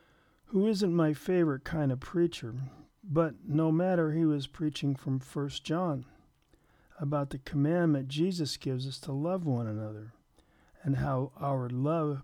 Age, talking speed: 50-69, 145 wpm